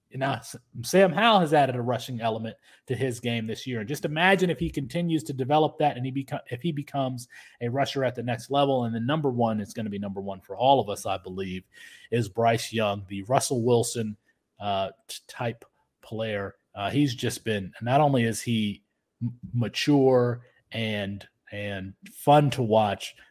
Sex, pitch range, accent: male, 110-140 Hz, American